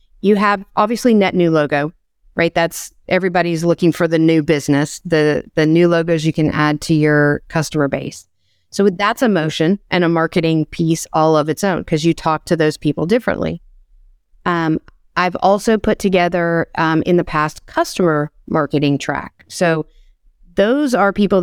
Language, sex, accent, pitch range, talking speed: English, female, American, 155-190 Hz, 170 wpm